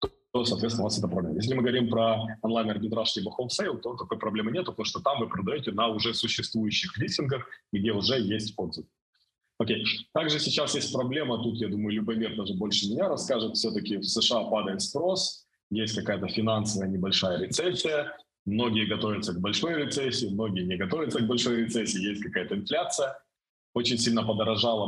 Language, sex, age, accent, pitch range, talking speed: Russian, male, 20-39, native, 105-120 Hz, 170 wpm